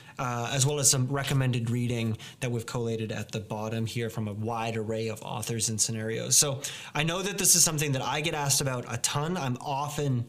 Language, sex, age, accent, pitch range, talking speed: English, male, 20-39, American, 115-150 Hz, 220 wpm